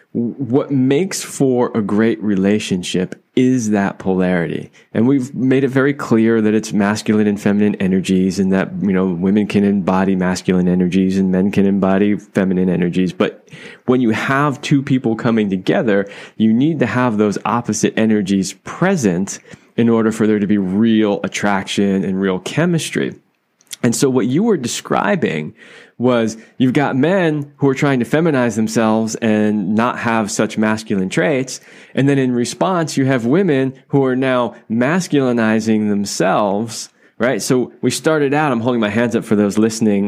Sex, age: male, 20-39